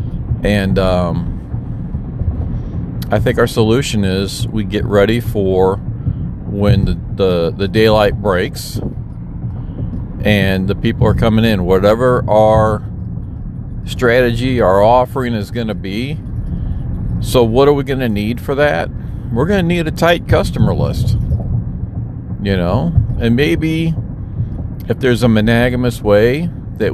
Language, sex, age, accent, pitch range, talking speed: English, male, 50-69, American, 95-120 Hz, 130 wpm